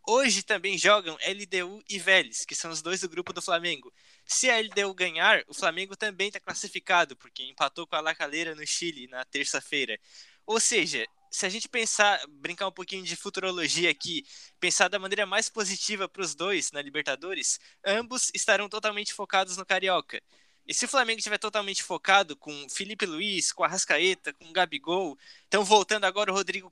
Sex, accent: male, Brazilian